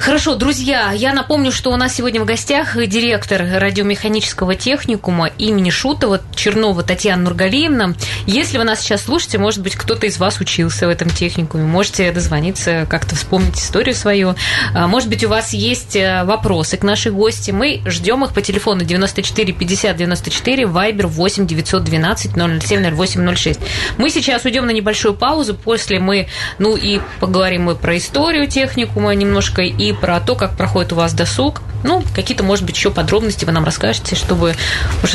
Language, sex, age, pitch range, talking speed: Russian, female, 20-39, 170-230 Hz, 160 wpm